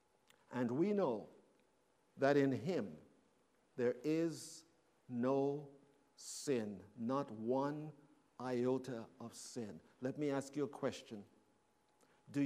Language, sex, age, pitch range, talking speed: English, male, 50-69, 130-205 Hz, 105 wpm